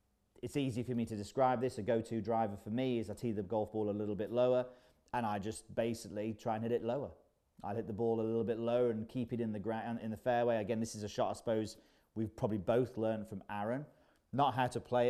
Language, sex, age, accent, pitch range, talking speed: English, male, 40-59, British, 105-125 Hz, 260 wpm